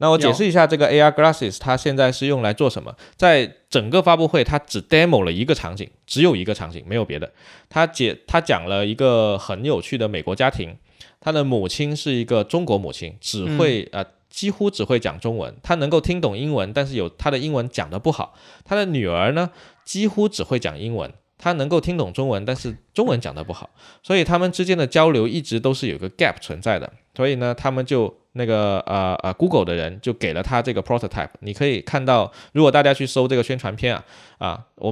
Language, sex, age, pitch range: Chinese, male, 20-39, 115-155 Hz